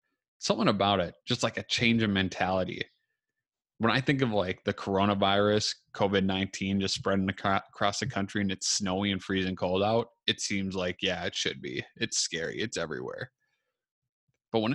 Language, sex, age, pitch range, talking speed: English, male, 20-39, 95-110 Hz, 170 wpm